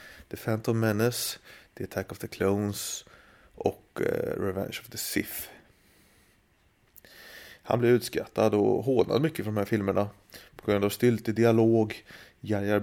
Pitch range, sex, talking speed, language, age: 100-120 Hz, male, 140 wpm, Swedish, 30-49